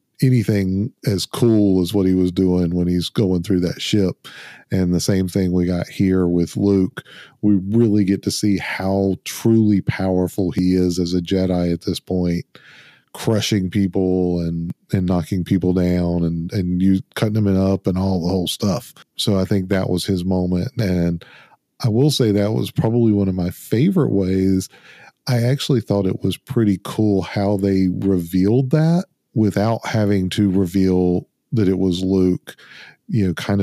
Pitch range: 90-105 Hz